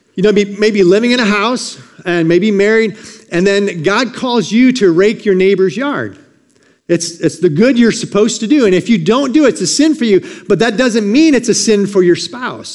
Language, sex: English, male